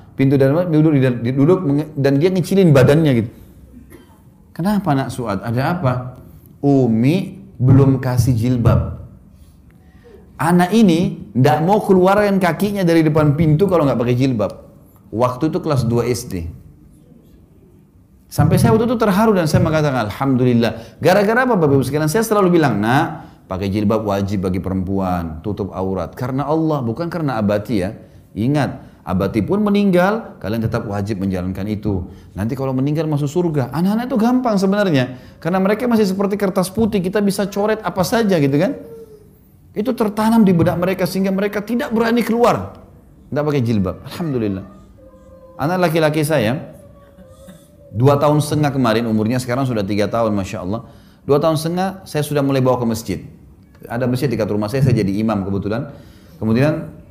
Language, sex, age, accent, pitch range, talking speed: Indonesian, male, 30-49, native, 110-180 Hz, 150 wpm